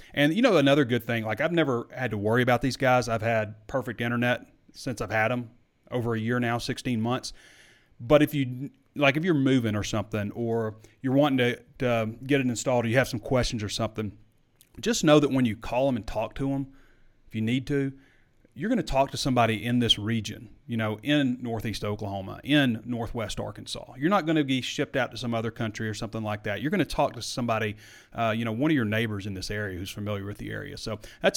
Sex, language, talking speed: male, English, 235 wpm